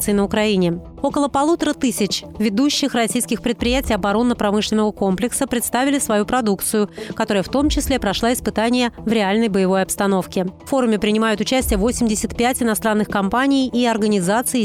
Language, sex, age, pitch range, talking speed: Russian, female, 30-49, 205-250 Hz, 130 wpm